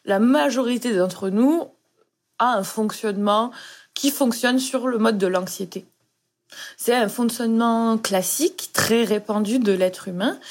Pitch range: 210-265 Hz